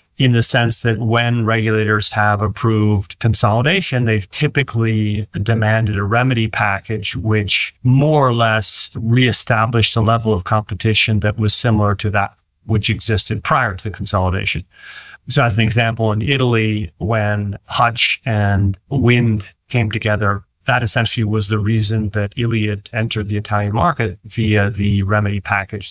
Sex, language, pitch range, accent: male, English, 100-115 Hz, American